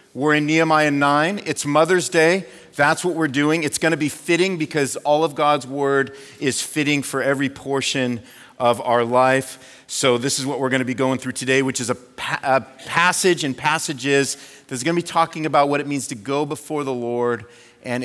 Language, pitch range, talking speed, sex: English, 125-160 Hz, 205 wpm, male